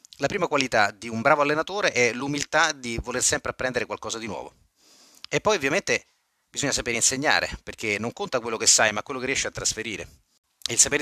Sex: male